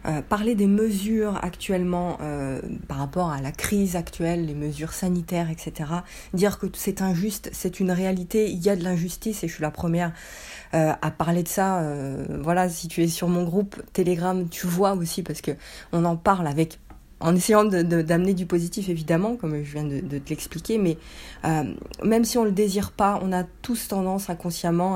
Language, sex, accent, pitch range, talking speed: French, female, French, 170-200 Hz, 200 wpm